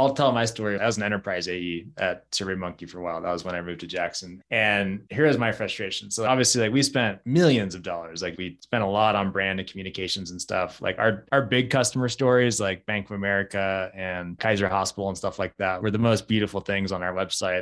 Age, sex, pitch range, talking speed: 20-39, male, 100-120 Hz, 240 wpm